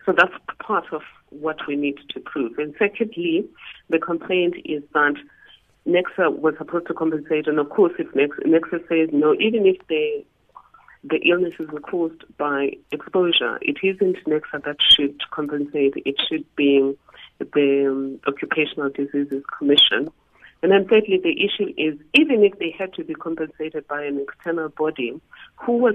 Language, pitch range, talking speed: English, 150-195 Hz, 160 wpm